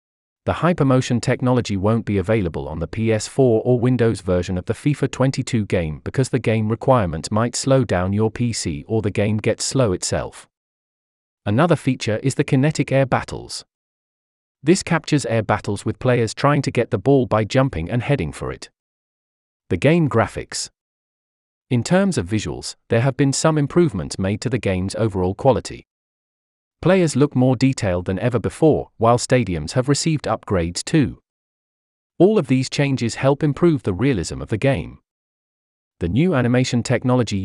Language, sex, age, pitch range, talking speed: English, male, 40-59, 105-135 Hz, 165 wpm